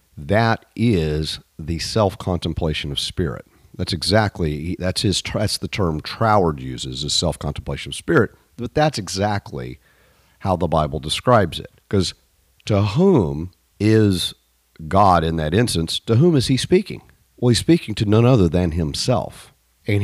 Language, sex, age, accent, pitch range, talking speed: English, male, 50-69, American, 80-105 Hz, 145 wpm